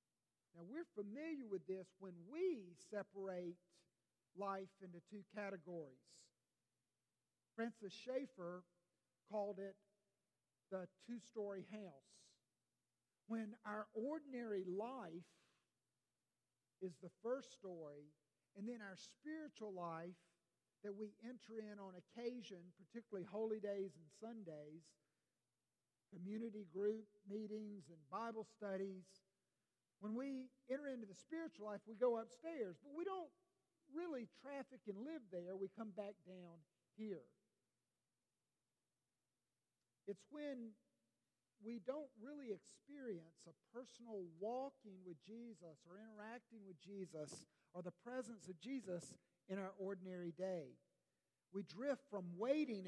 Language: English